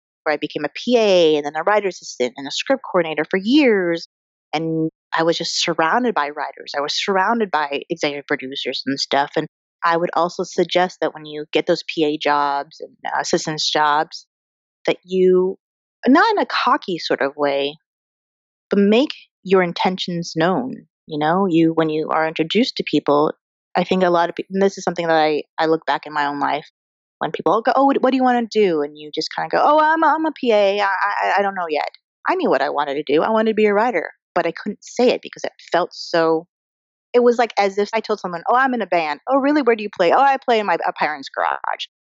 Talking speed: 235 wpm